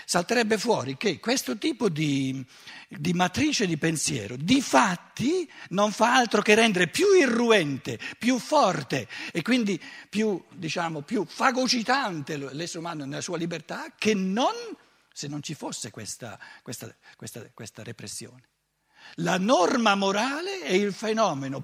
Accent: native